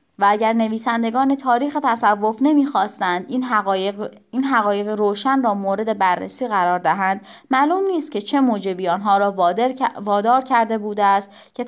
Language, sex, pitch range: Persian, female, 200-250 Hz